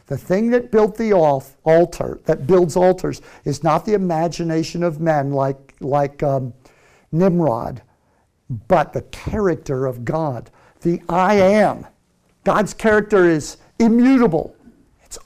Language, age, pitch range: English, 50-69, 155-230 Hz